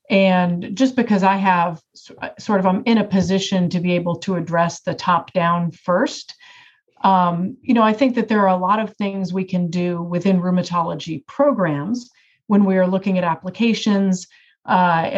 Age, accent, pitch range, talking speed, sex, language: 40-59, American, 175-205 Hz, 180 wpm, female, English